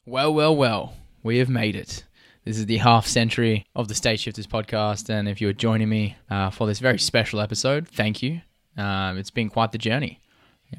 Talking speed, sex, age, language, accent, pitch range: 205 wpm, male, 20-39, English, Australian, 105-120 Hz